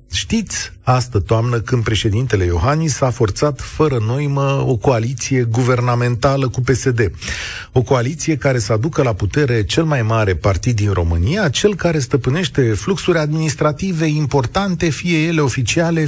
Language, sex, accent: Romanian, male, native